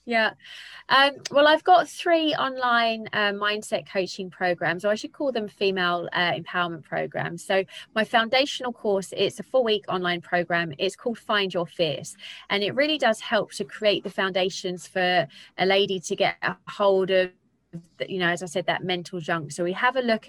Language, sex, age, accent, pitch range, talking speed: English, female, 20-39, British, 180-220 Hz, 190 wpm